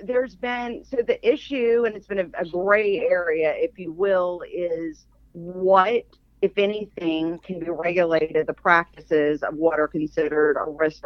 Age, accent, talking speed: 50-69, American, 165 wpm